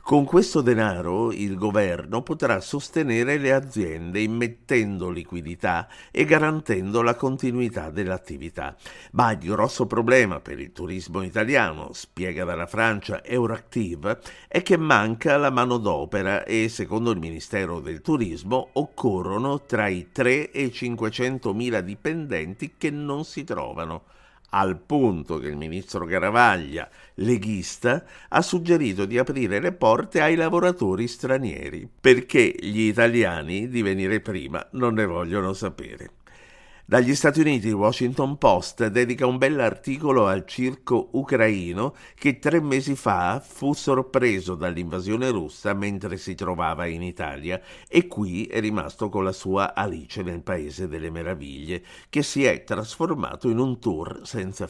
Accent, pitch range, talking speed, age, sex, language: native, 95-135 Hz, 135 wpm, 50-69, male, Italian